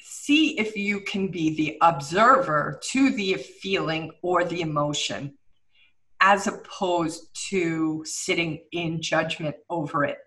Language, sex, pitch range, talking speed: English, female, 160-190 Hz, 125 wpm